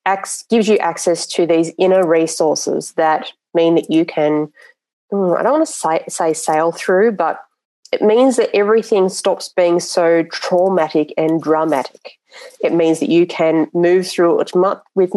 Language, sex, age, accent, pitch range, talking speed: English, female, 30-49, Australian, 160-195 Hz, 155 wpm